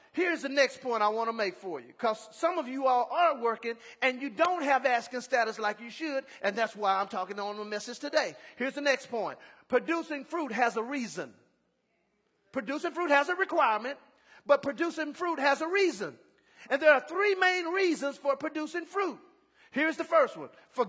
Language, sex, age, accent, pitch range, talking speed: English, male, 40-59, American, 220-320 Hz, 200 wpm